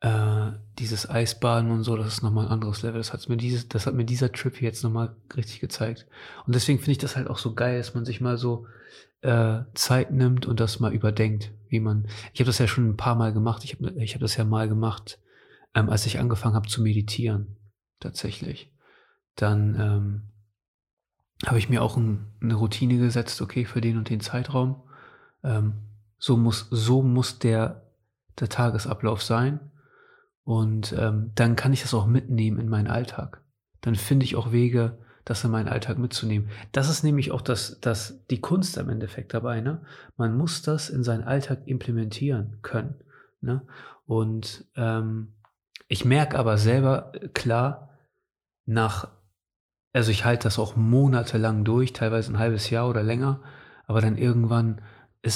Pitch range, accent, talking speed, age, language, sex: 110-125 Hz, German, 180 wpm, 30-49, German, male